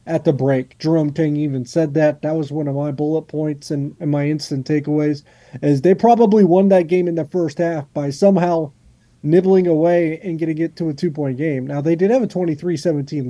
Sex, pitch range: male, 140-165 Hz